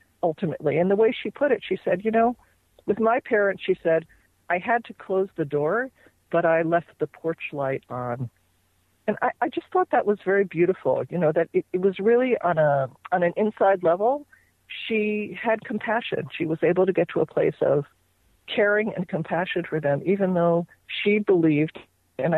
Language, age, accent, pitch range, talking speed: English, 50-69, American, 145-200 Hz, 195 wpm